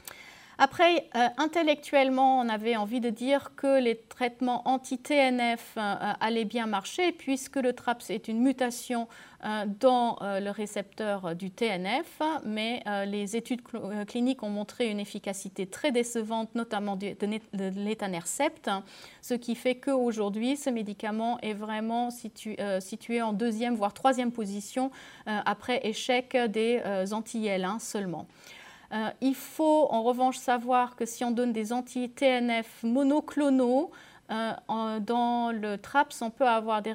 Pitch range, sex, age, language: 210-250 Hz, female, 40-59, French